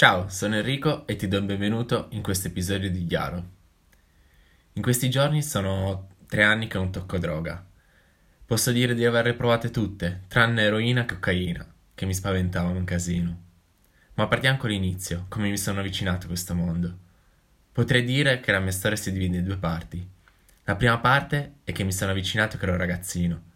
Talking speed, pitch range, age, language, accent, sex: 180 wpm, 90-110 Hz, 10-29, Italian, native, male